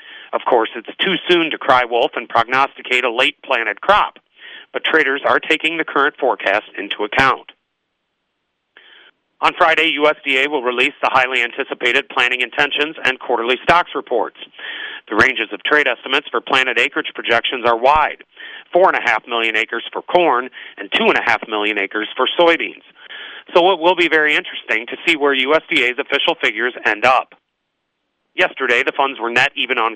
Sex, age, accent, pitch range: male, 40-59, American, 125-160 Hz